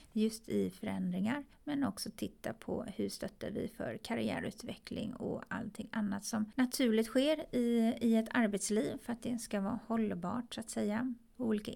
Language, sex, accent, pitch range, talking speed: English, female, Swedish, 200-230 Hz, 160 wpm